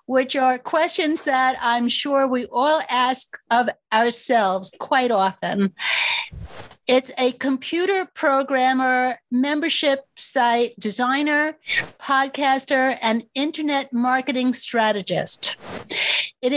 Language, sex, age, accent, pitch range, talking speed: English, female, 50-69, American, 230-280 Hz, 95 wpm